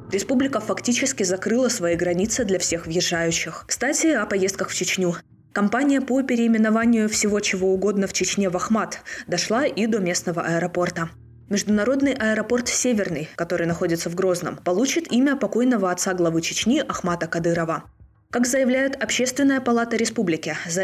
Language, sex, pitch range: Russian, female, 170-245 Hz